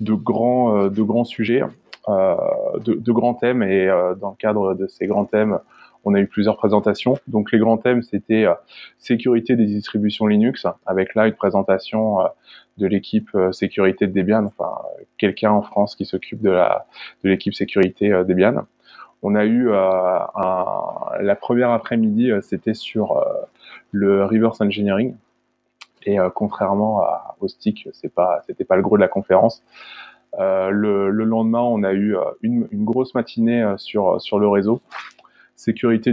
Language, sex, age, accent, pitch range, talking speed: French, male, 20-39, French, 100-115 Hz, 160 wpm